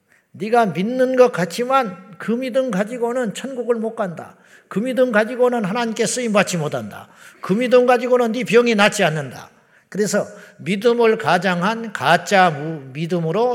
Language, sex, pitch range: Korean, male, 175-235 Hz